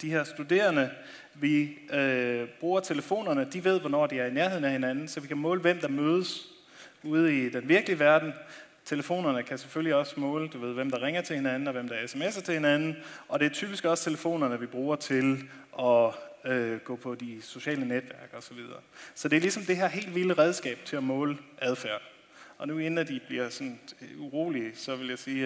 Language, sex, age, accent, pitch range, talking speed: English, male, 30-49, Danish, 130-170 Hz, 205 wpm